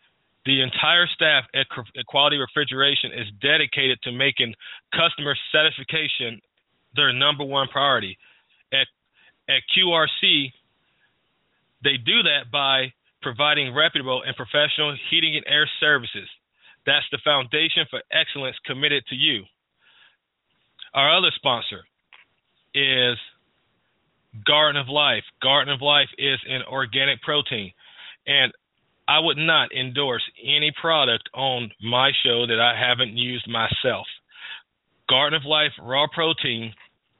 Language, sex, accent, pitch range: English, male, American, 125-150 Hz